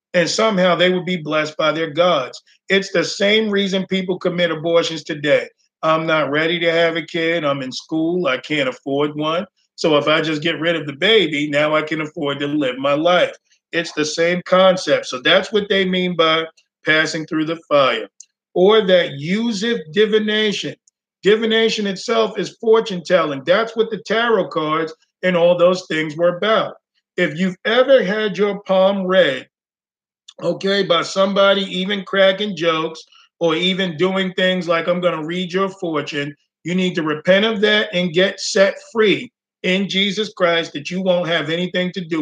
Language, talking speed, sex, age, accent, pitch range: English, 180 wpm, male, 50-69, American, 165-200 Hz